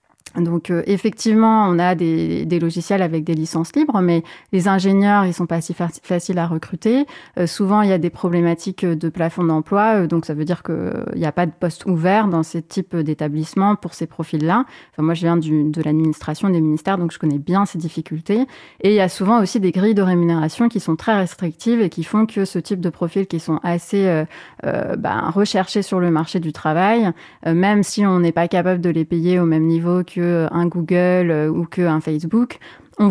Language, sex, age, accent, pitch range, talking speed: French, female, 30-49, French, 165-200 Hz, 220 wpm